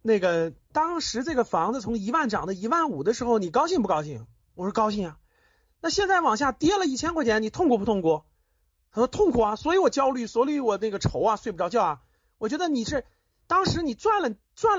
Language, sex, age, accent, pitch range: Chinese, male, 30-49, native, 195-290 Hz